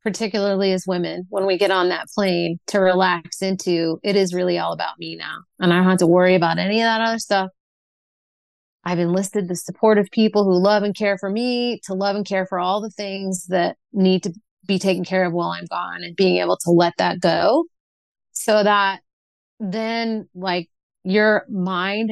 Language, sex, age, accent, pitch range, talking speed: English, female, 30-49, American, 175-200 Hz, 200 wpm